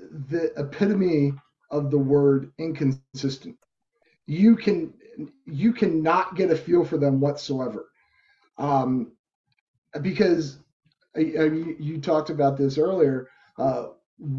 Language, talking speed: English, 110 wpm